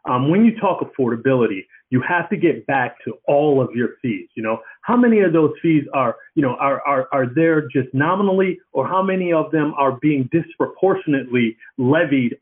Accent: American